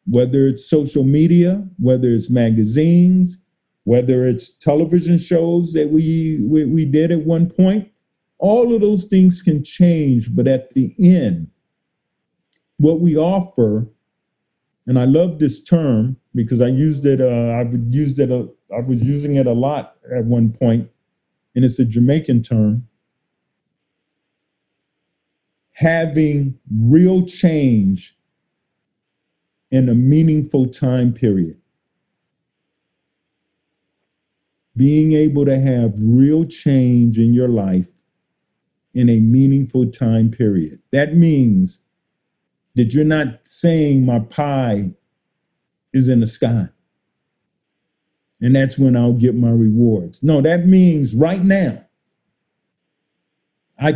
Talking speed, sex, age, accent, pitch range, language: 120 wpm, male, 50-69, American, 120-160 Hz, English